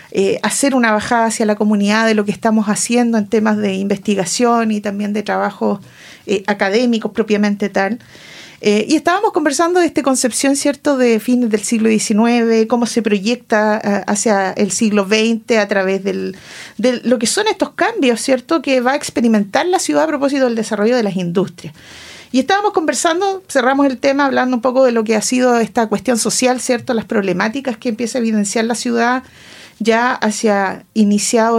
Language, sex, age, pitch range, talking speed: Spanish, female, 40-59, 210-245 Hz, 185 wpm